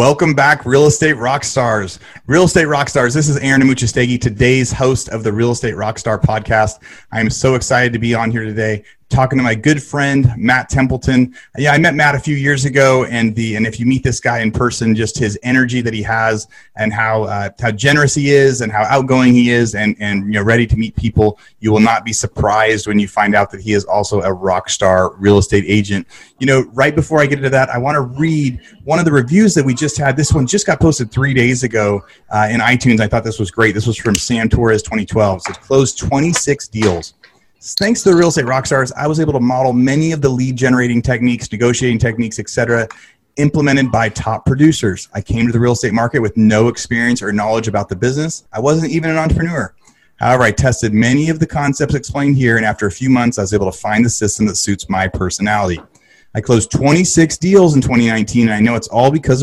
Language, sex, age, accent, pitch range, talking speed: English, male, 30-49, American, 110-140 Hz, 230 wpm